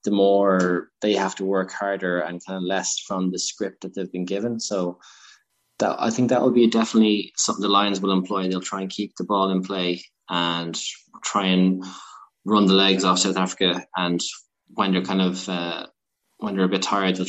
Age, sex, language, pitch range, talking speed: 20-39, male, English, 90-105 Hz, 215 wpm